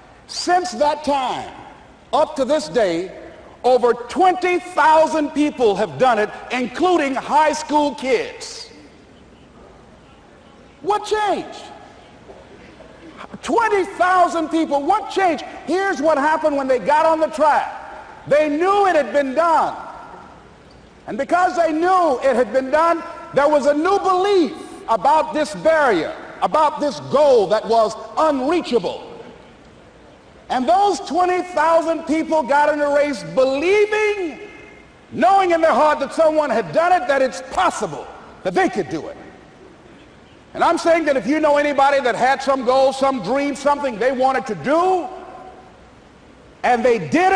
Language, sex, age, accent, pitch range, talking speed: English, male, 50-69, American, 280-360 Hz, 135 wpm